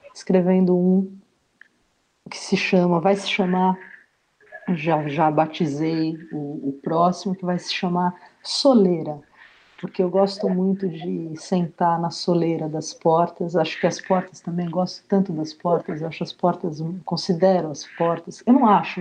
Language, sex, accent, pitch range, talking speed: Portuguese, female, Brazilian, 155-180 Hz, 150 wpm